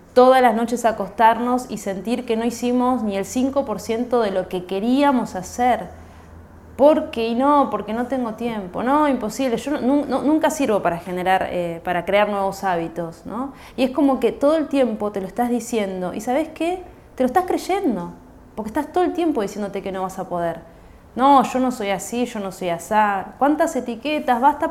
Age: 20-39